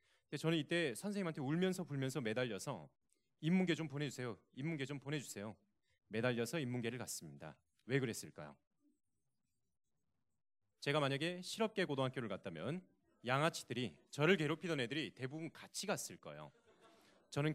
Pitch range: 125-165 Hz